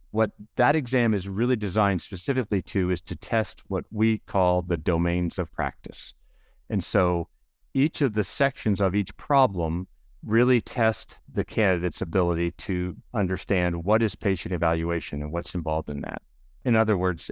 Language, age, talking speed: English, 60-79, 160 wpm